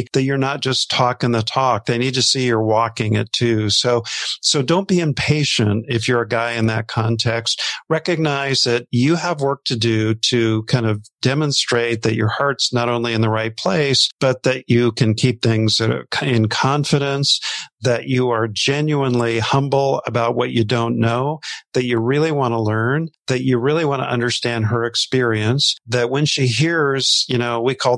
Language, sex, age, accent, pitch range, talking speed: English, male, 50-69, American, 115-135 Hz, 190 wpm